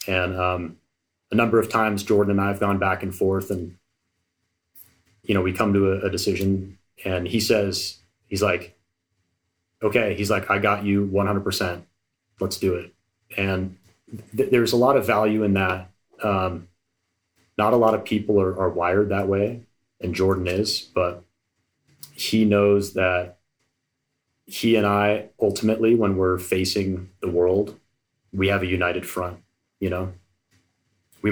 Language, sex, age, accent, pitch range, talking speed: English, male, 30-49, American, 90-105 Hz, 155 wpm